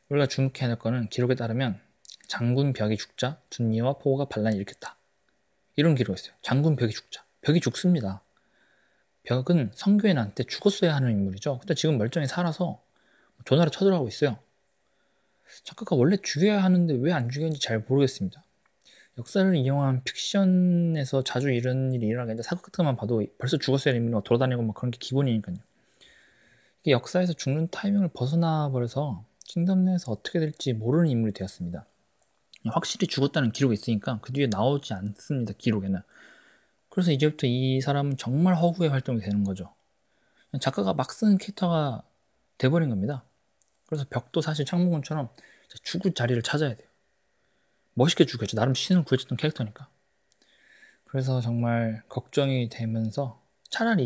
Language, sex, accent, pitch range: Korean, male, native, 115-160 Hz